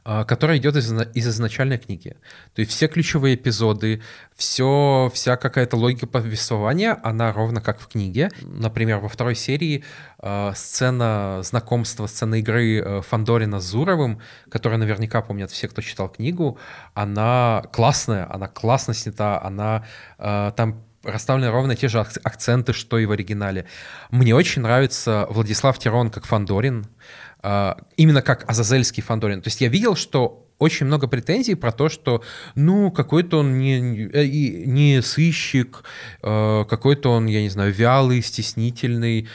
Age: 20-39